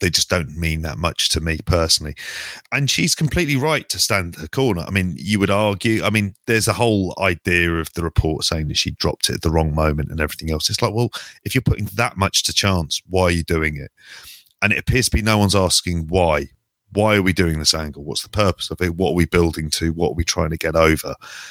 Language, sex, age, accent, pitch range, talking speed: English, male, 30-49, British, 85-115 Hz, 255 wpm